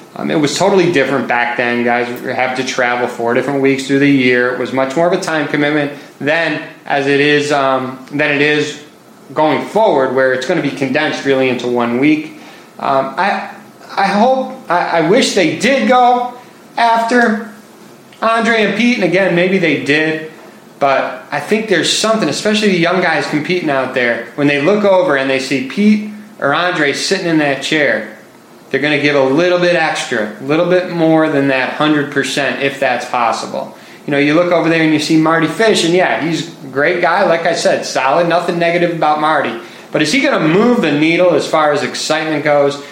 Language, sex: English, male